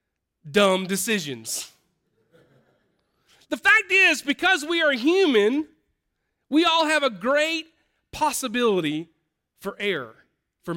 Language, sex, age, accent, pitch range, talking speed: English, male, 40-59, American, 190-245 Hz, 100 wpm